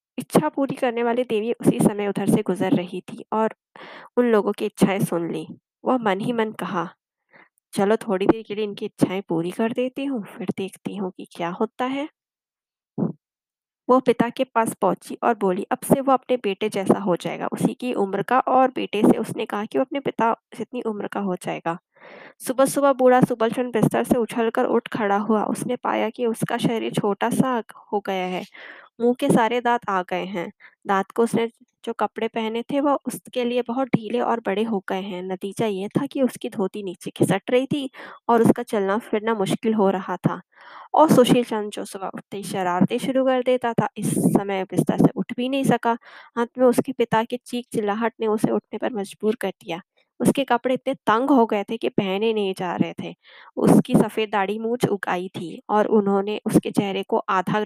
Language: Hindi